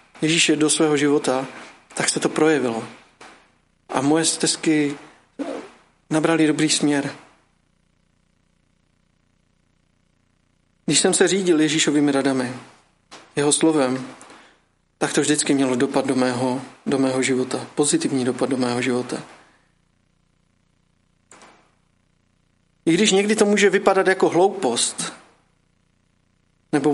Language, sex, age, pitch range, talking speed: Czech, male, 40-59, 135-160 Hz, 105 wpm